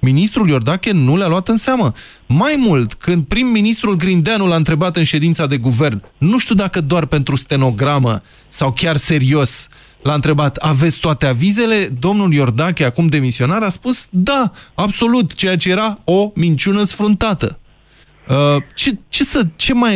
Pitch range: 140-185 Hz